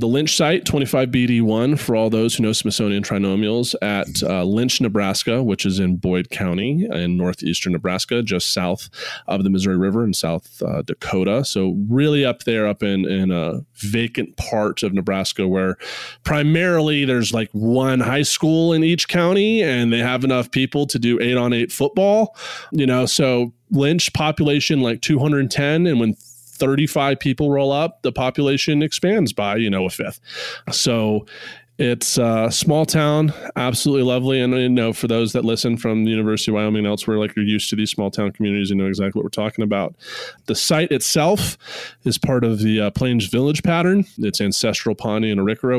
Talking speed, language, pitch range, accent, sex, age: 185 wpm, English, 105-140 Hz, American, male, 20-39